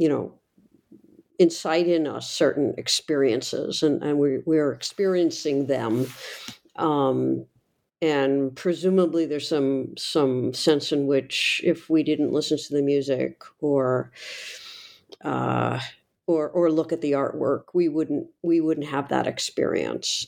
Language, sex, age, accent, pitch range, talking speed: English, female, 60-79, American, 145-190 Hz, 130 wpm